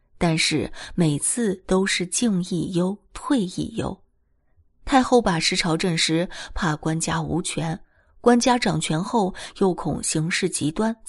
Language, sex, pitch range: Chinese, female, 160-225 Hz